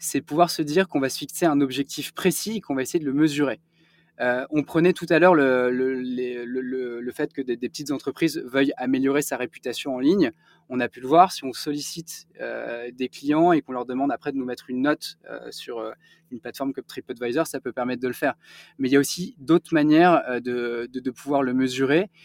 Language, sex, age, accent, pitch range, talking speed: French, male, 20-39, French, 125-165 Hz, 240 wpm